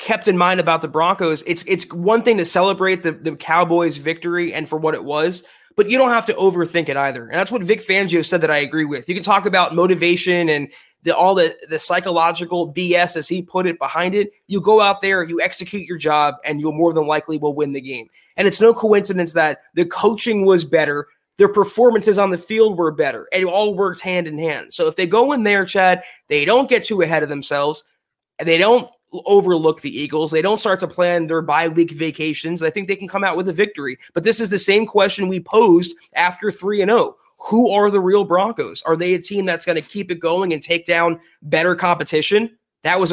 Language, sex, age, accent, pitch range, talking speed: English, male, 20-39, American, 160-200 Hz, 230 wpm